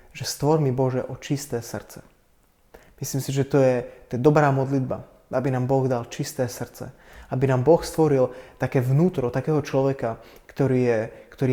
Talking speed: 170 wpm